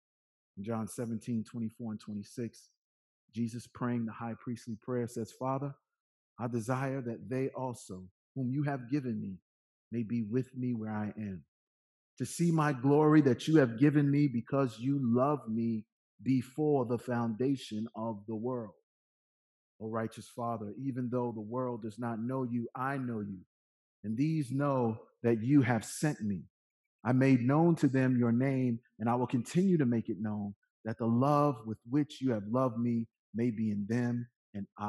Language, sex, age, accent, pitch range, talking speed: English, male, 40-59, American, 105-130 Hz, 175 wpm